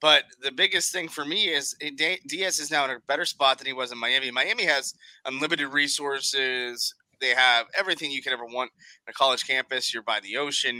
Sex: male